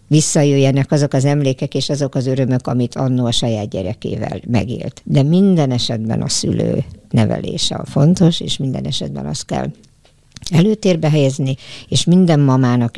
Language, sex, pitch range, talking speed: Hungarian, male, 125-165 Hz, 150 wpm